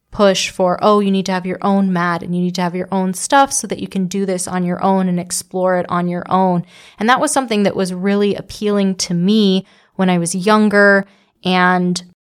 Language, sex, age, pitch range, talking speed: English, female, 20-39, 185-210 Hz, 235 wpm